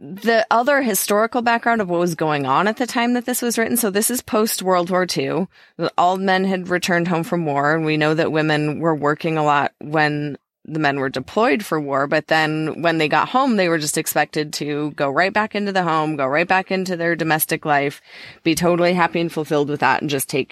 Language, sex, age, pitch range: English, female, 20-39, 150-185 Hz